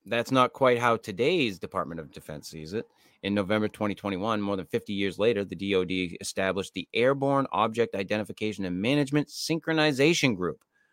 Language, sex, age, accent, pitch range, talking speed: English, male, 30-49, American, 95-125 Hz, 160 wpm